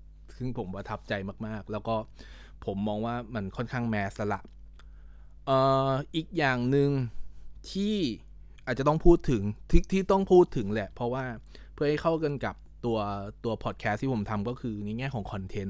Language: Thai